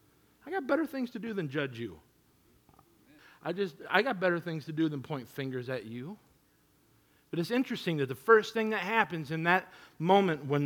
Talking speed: 195 wpm